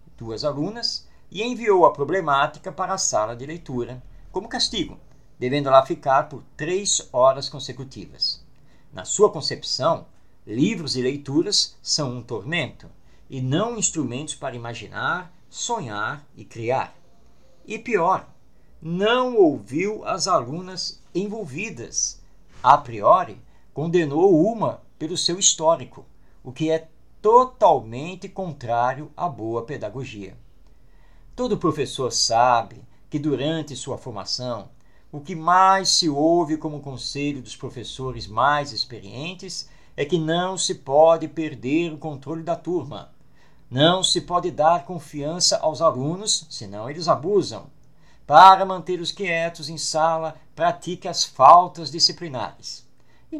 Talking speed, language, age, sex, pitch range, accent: 120 wpm, Portuguese, 50-69, male, 135-180 Hz, Brazilian